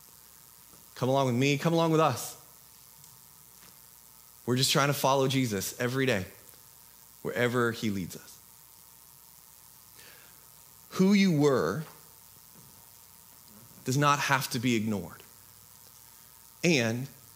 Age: 30-49